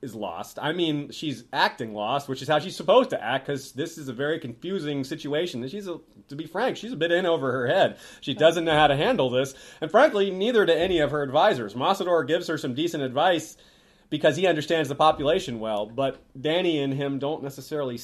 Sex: male